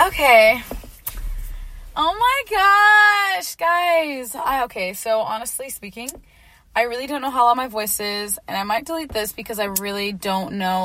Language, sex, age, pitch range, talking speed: English, female, 10-29, 205-265 Hz, 155 wpm